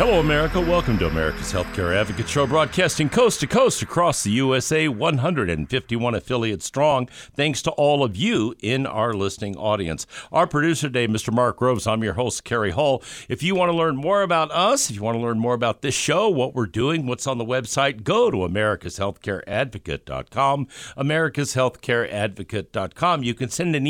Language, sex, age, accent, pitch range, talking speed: English, male, 60-79, American, 105-145 Hz, 180 wpm